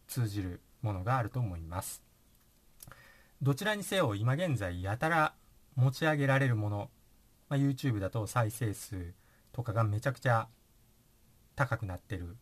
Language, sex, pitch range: Japanese, male, 100-135 Hz